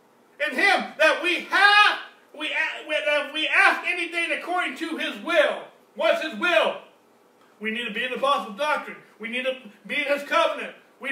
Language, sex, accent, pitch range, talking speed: English, male, American, 300-350 Hz, 180 wpm